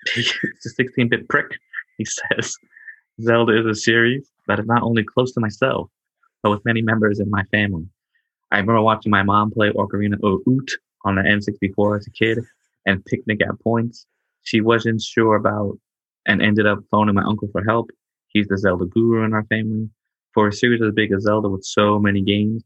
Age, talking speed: 20-39, 195 wpm